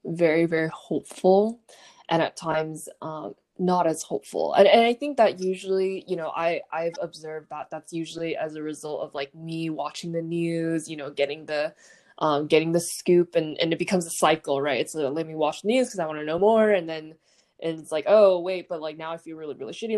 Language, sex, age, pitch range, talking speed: English, female, 20-39, 155-175 Hz, 230 wpm